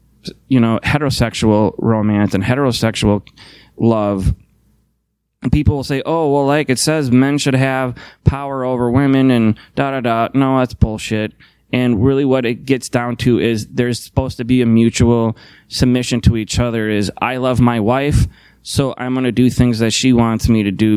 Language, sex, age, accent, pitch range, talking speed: English, male, 20-39, American, 110-130 Hz, 185 wpm